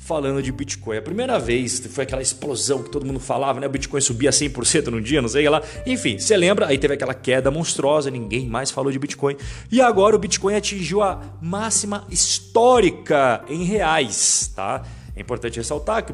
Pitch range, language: 125-180 Hz, Portuguese